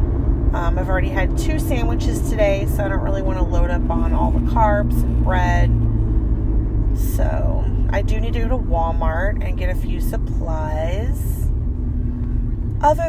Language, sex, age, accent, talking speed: English, female, 20-39, American, 160 wpm